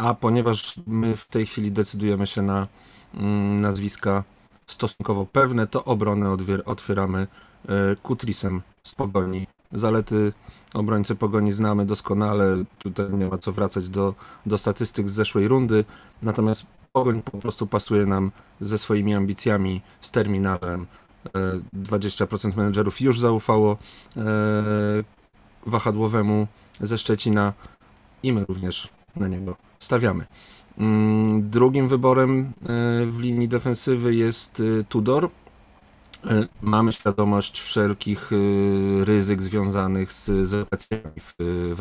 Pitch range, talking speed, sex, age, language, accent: 100-115 Hz, 105 wpm, male, 30-49, Polish, native